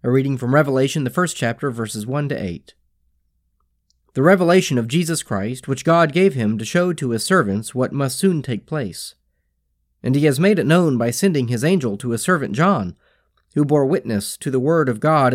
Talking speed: 205 wpm